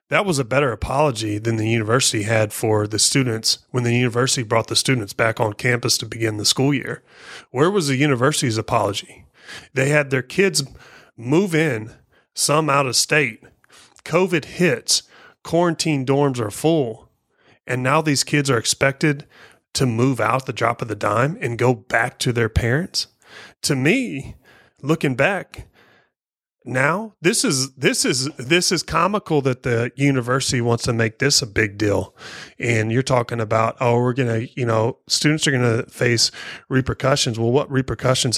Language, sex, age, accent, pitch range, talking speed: English, male, 30-49, American, 115-140 Hz, 165 wpm